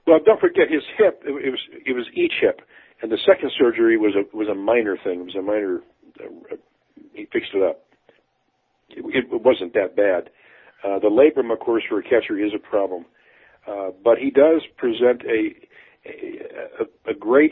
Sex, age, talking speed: male, 50-69, 190 wpm